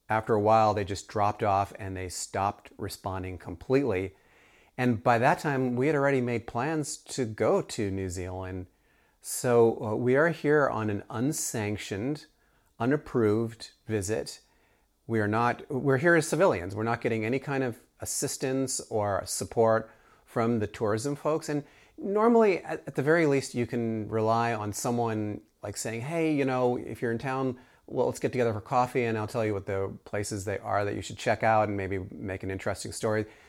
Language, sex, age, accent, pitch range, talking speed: English, male, 30-49, American, 105-130 Hz, 180 wpm